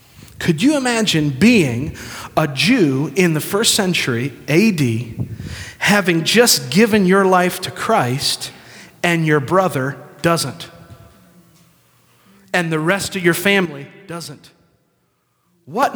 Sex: male